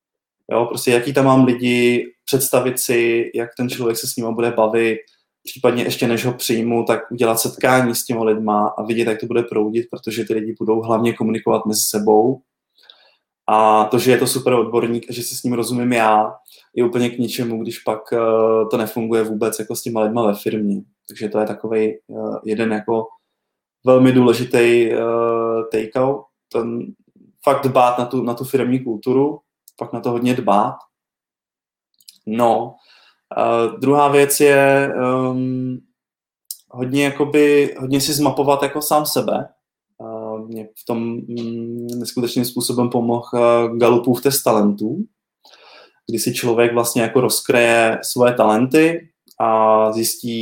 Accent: native